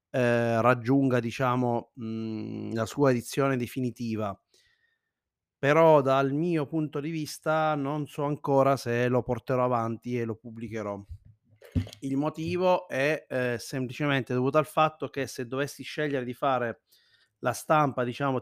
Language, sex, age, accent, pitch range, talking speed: Italian, male, 30-49, native, 120-150 Hz, 135 wpm